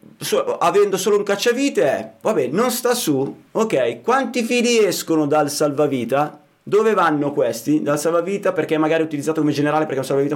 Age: 30-49